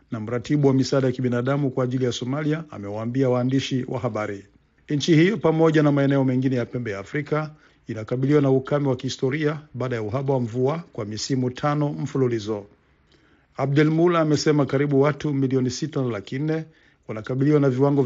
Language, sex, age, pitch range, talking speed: Swahili, male, 50-69, 125-150 Hz, 155 wpm